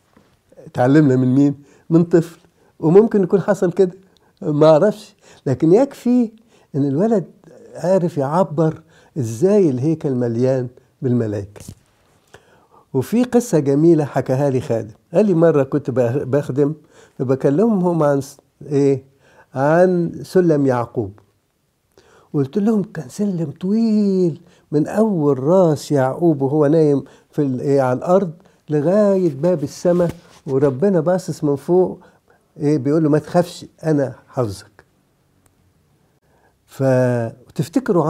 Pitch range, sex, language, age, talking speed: 135-180 Hz, male, English, 60-79, 105 wpm